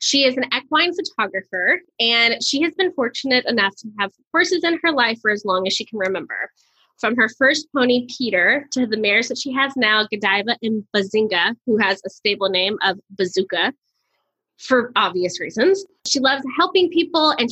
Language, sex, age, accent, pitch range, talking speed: English, female, 20-39, American, 195-270 Hz, 185 wpm